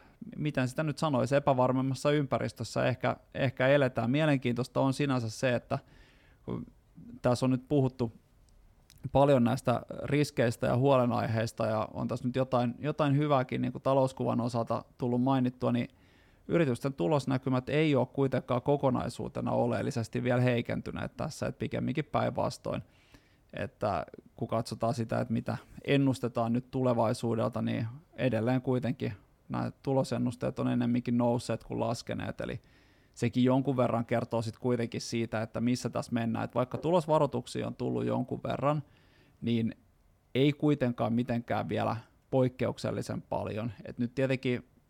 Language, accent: Finnish, native